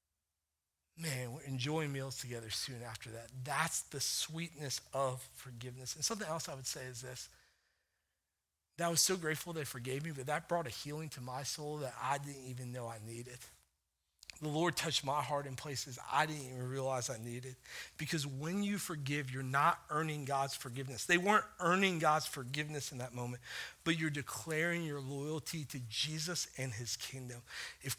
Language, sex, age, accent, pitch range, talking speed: English, male, 40-59, American, 115-160 Hz, 180 wpm